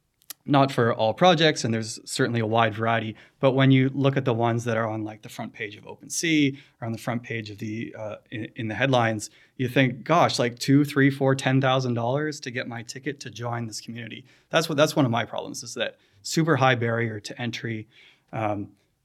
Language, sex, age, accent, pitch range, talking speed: English, male, 20-39, American, 115-135 Hz, 225 wpm